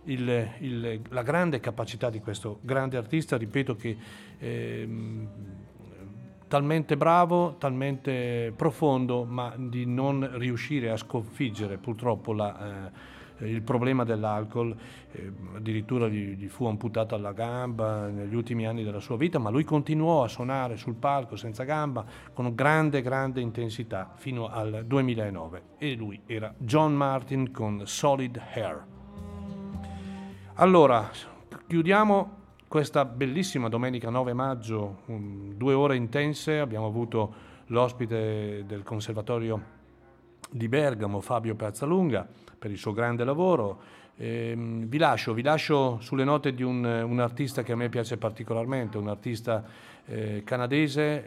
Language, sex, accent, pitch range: Italian, male, native, 110-135 Hz